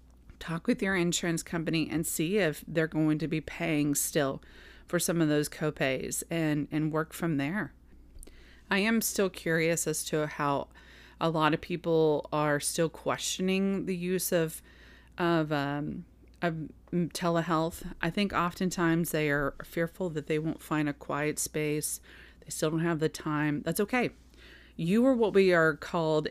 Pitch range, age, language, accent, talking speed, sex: 155-190 Hz, 30-49, English, American, 165 wpm, female